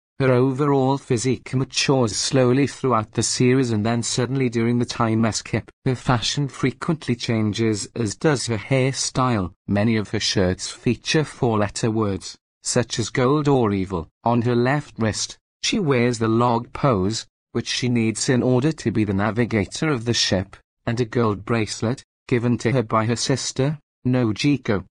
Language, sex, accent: English, male, British